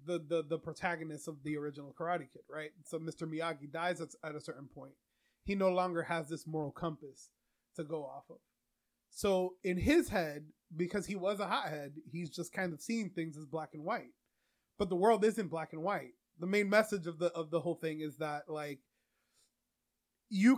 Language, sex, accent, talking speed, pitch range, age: English, male, American, 200 wpm, 160-200 Hz, 30-49